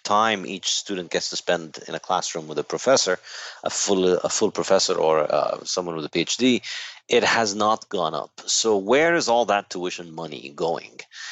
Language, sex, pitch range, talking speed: English, male, 80-105 Hz, 190 wpm